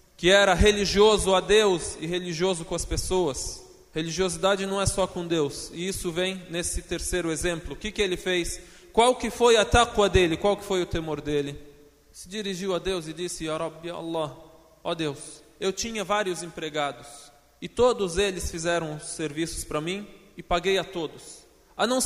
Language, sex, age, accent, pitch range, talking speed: Portuguese, male, 20-39, Brazilian, 165-200 Hz, 185 wpm